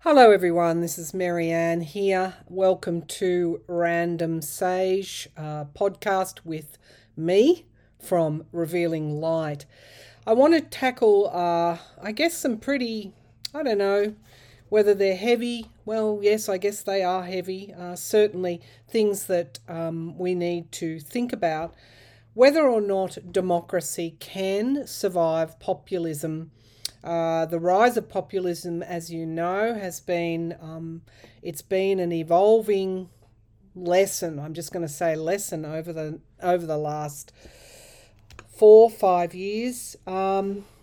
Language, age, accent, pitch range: English, 40-59, Australian, 160-195 Hz